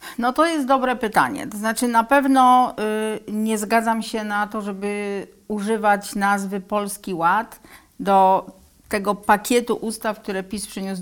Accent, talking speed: native, 140 wpm